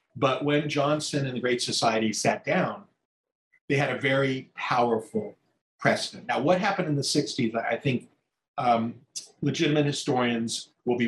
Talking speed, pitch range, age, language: 150 wpm, 115-150 Hz, 40-59, English